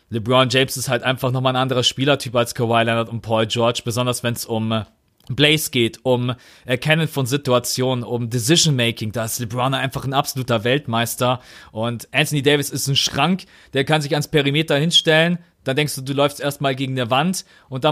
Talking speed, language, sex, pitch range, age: 190 wpm, German, male, 120-145 Hz, 30-49